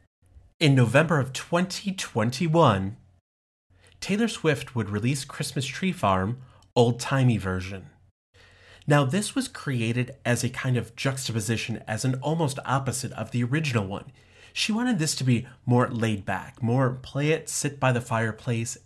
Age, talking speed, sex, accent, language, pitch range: 30-49, 145 wpm, male, American, English, 105-140 Hz